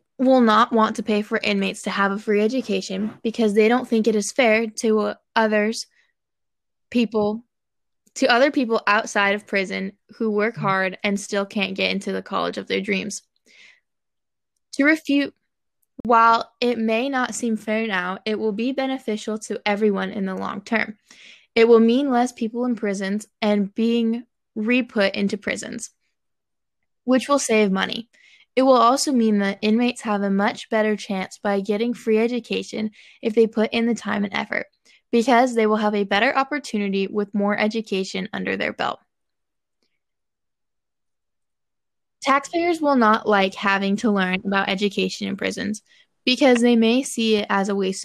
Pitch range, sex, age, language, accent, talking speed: 205-235 Hz, female, 10-29, English, American, 165 wpm